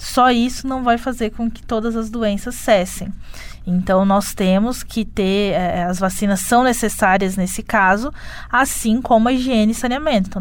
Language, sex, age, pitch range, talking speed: Portuguese, female, 20-39, 190-230 Hz, 175 wpm